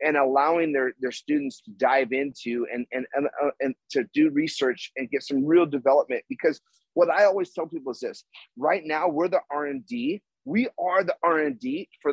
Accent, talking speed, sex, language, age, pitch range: American, 215 wpm, male, English, 30-49, 135-185 Hz